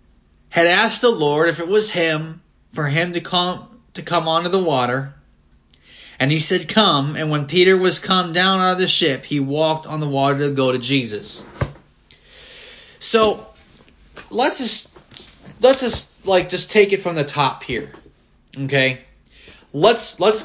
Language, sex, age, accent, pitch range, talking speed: English, male, 30-49, American, 145-205 Hz, 165 wpm